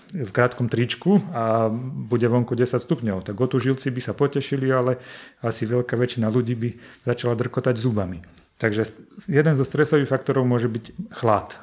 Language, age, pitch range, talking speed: Slovak, 30-49, 110-125 Hz, 165 wpm